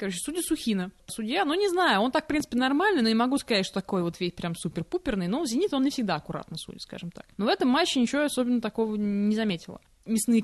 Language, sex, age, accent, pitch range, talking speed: Russian, female, 20-39, native, 205-285 Hz, 235 wpm